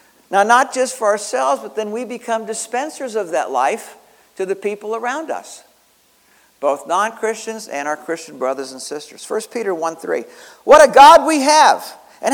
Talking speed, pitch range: 180 wpm, 170-270 Hz